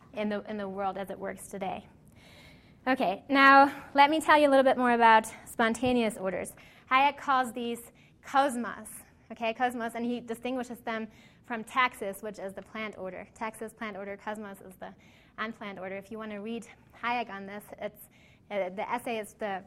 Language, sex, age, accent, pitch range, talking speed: English, female, 20-39, American, 215-250 Hz, 185 wpm